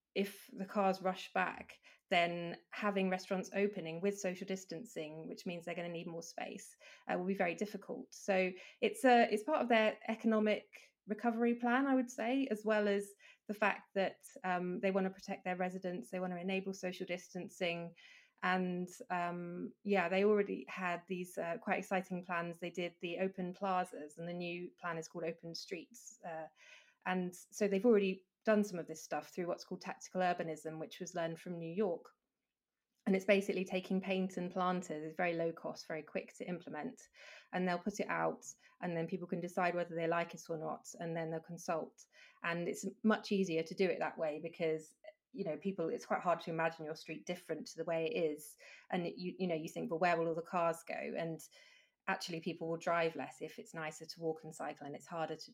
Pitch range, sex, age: 170-200 Hz, female, 20-39